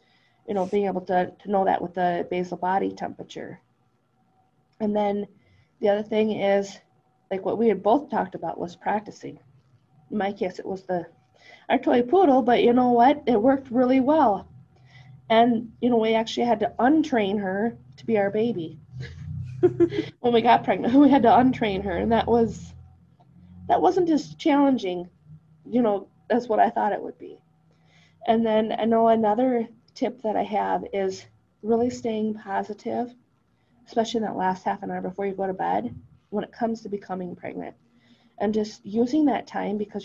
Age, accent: 20-39, American